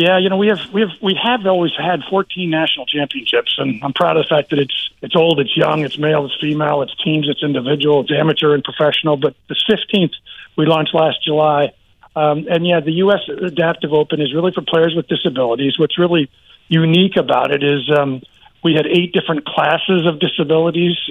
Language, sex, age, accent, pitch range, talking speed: English, male, 50-69, American, 150-180 Hz, 205 wpm